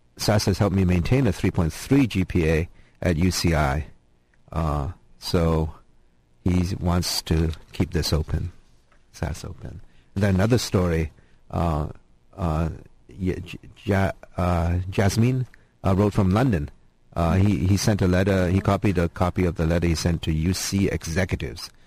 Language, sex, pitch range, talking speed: English, male, 80-100 Hz, 135 wpm